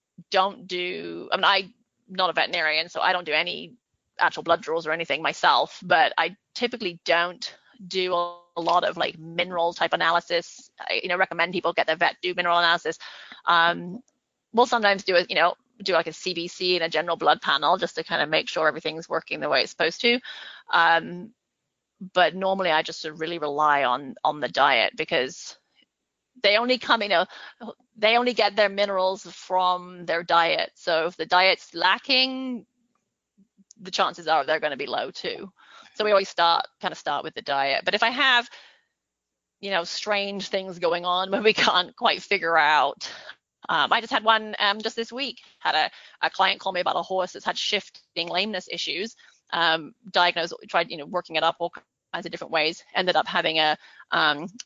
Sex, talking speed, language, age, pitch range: female, 195 wpm, English, 30-49, 165-200 Hz